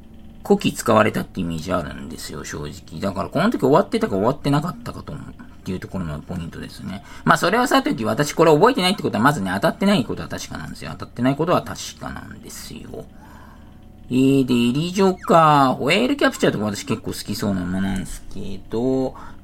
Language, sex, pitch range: Japanese, male, 90-145 Hz